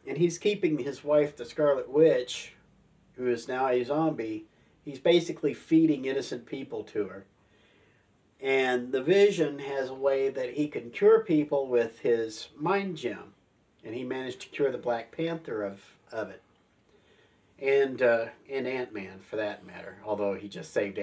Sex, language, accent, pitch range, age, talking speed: male, English, American, 110-145 Hz, 50-69, 165 wpm